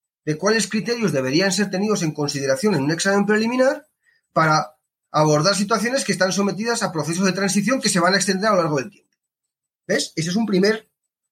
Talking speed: 195 wpm